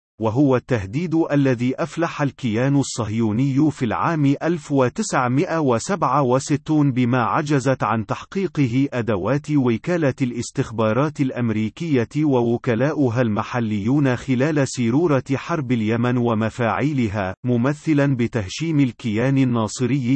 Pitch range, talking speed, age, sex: 120-145 Hz, 85 wpm, 40-59, male